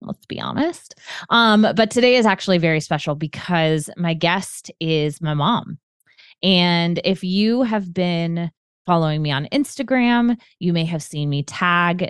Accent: American